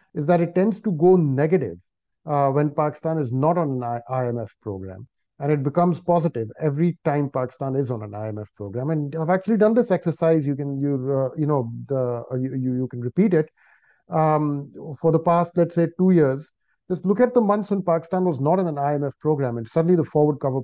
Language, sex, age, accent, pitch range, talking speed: English, male, 50-69, Indian, 130-175 Hz, 210 wpm